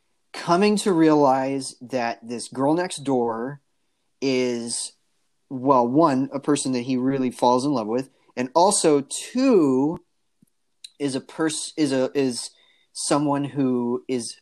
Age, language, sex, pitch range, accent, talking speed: 30-49, English, male, 120-155 Hz, American, 135 wpm